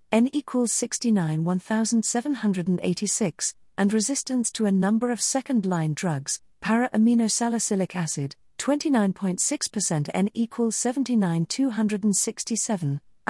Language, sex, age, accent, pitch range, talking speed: English, female, 50-69, British, 170-230 Hz, 75 wpm